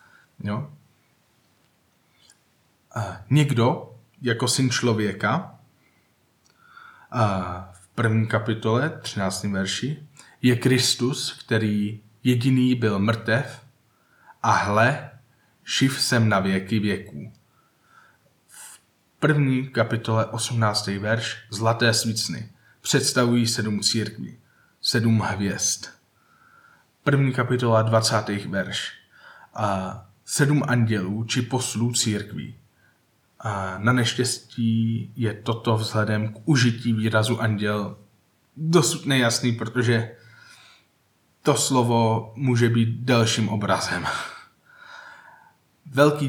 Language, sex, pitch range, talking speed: Czech, male, 110-125 Hz, 85 wpm